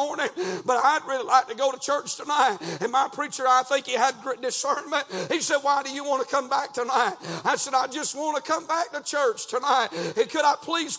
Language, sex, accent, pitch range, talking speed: English, male, American, 270-305 Hz, 240 wpm